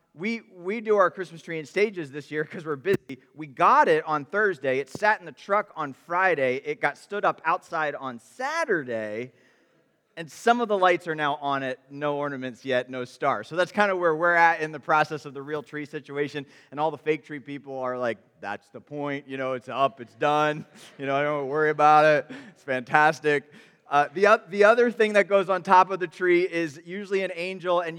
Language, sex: English, male